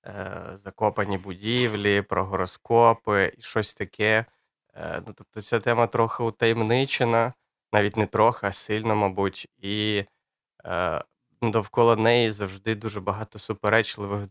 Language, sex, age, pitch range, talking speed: Ukrainian, male, 20-39, 100-115 Hz, 115 wpm